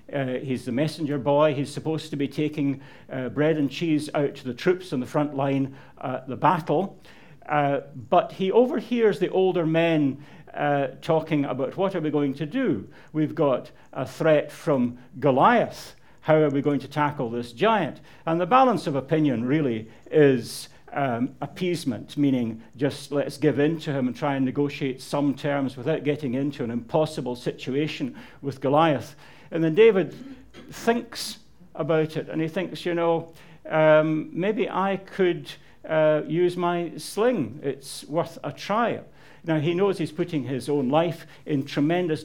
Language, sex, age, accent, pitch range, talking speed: English, male, 60-79, British, 140-165 Hz, 170 wpm